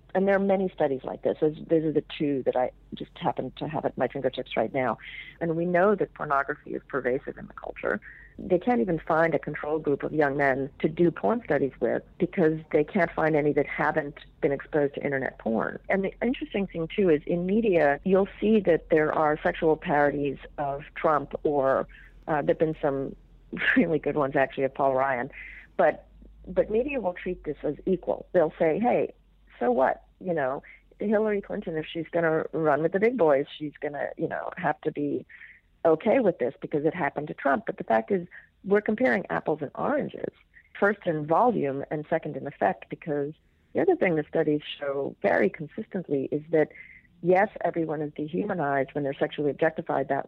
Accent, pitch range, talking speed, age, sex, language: American, 145-175 Hz, 200 wpm, 50-69, female, English